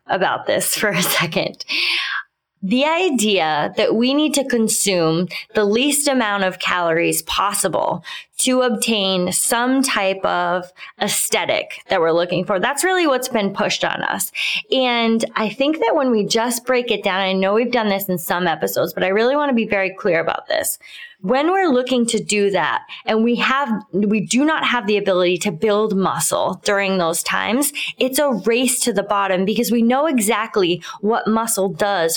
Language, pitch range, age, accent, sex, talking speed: English, 195-255 Hz, 20-39, American, female, 180 wpm